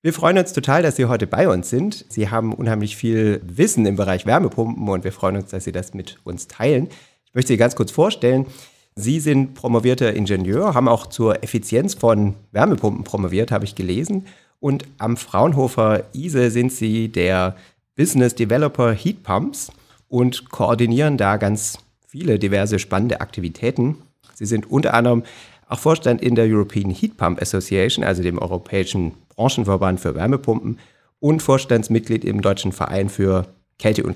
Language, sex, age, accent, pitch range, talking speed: German, male, 40-59, German, 95-125 Hz, 165 wpm